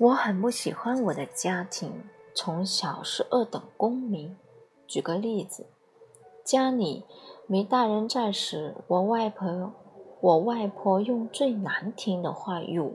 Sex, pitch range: female, 185-245 Hz